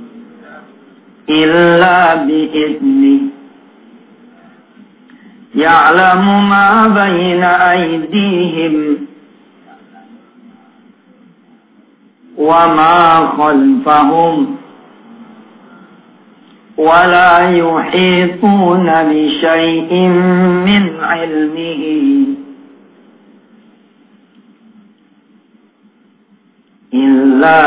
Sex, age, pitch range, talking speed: male, 50-69, 165-235 Hz, 30 wpm